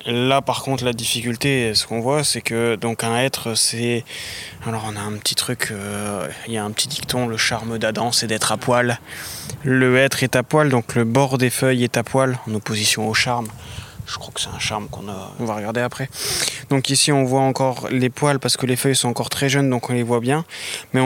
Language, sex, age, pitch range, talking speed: French, male, 20-39, 115-130 Hz, 240 wpm